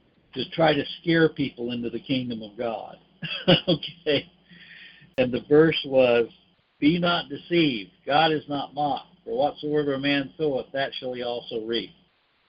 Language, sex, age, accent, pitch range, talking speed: English, male, 60-79, American, 130-175 Hz, 155 wpm